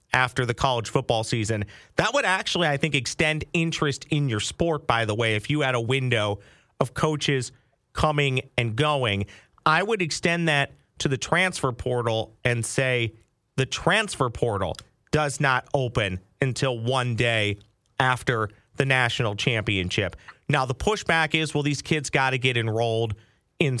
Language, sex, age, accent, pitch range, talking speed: English, male, 40-59, American, 120-150 Hz, 160 wpm